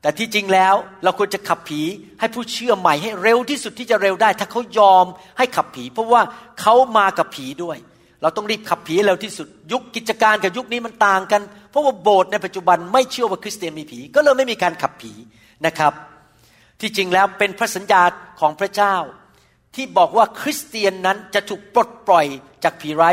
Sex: male